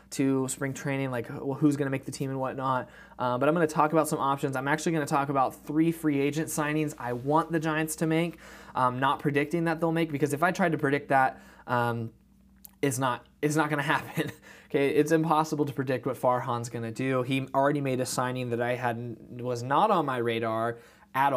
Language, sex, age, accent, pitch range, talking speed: English, male, 20-39, American, 125-155 Hz, 230 wpm